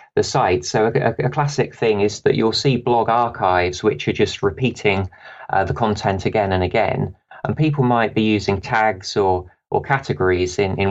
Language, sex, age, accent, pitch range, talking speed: English, male, 30-49, British, 95-115 Hz, 185 wpm